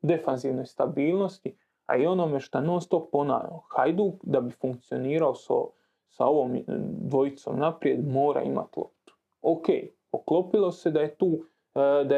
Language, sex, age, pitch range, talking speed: Croatian, male, 30-49, 140-185 Hz, 140 wpm